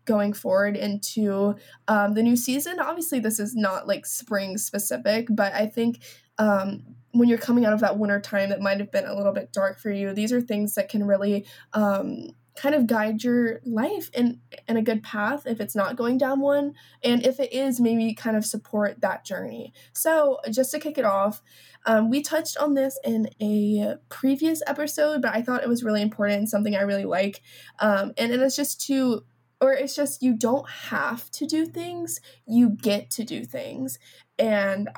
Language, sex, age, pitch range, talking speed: English, female, 10-29, 210-265 Hz, 200 wpm